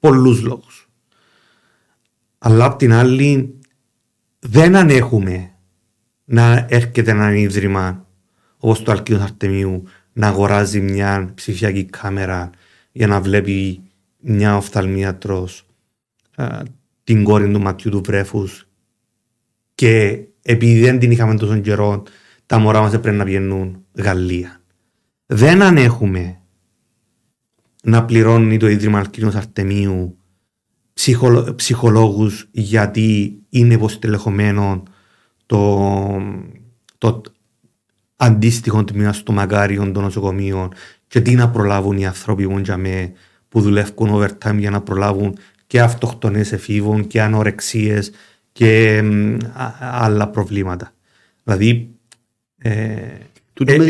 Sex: male